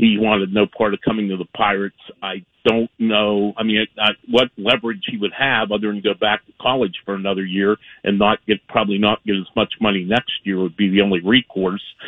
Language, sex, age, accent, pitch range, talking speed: English, male, 50-69, American, 100-120 Hz, 225 wpm